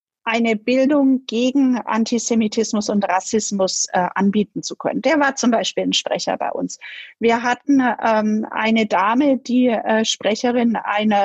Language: German